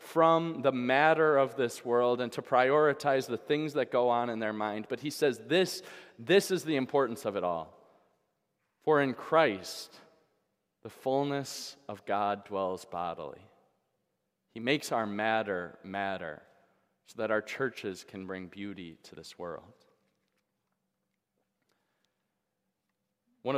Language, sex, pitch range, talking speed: English, male, 110-145 Hz, 135 wpm